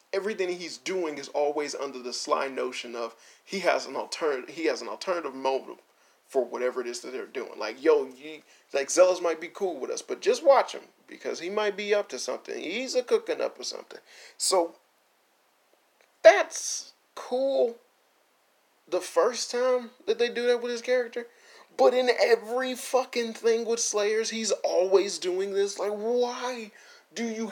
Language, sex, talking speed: English, male, 175 wpm